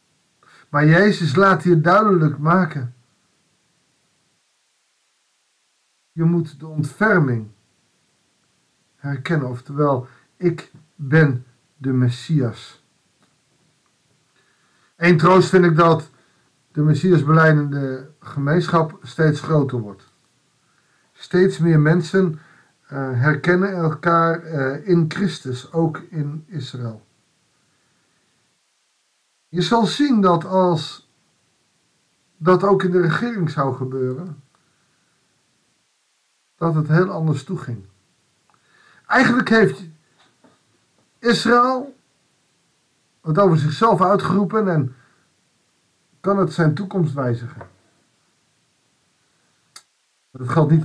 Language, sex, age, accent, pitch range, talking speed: Dutch, male, 50-69, Dutch, 135-175 Hz, 85 wpm